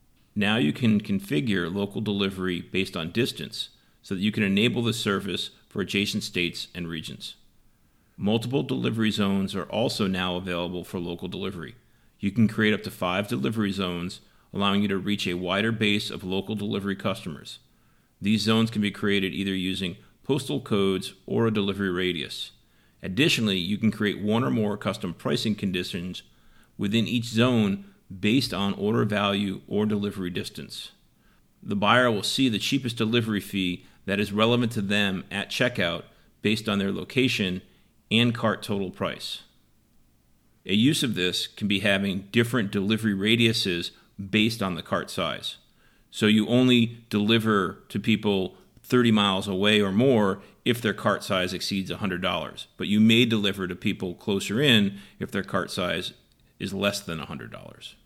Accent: American